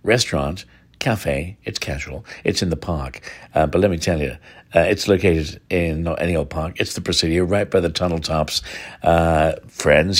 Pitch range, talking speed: 80-100 Hz, 190 wpm